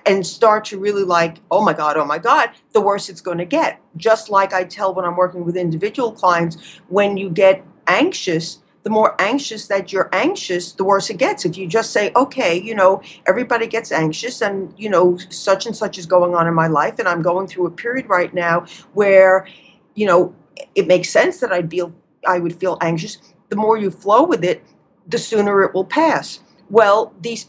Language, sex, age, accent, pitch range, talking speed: English, female, 50-69, American, 180-225 Hz, 210 wpm